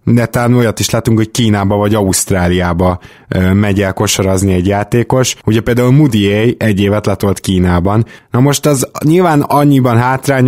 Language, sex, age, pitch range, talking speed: Hungarian, male, 20-39, 100-115 Hz, 160 wpm